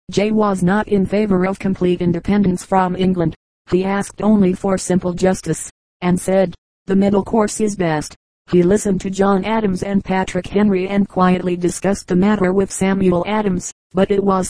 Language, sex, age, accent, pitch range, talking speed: English, female, 40-59, American, 180-195 Hz, 175 wpm